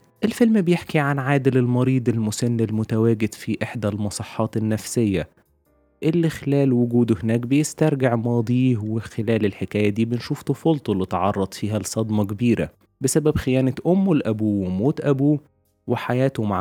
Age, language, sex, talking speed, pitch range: 20-39, Arabic, male, 125 wpm, 110-150 Hz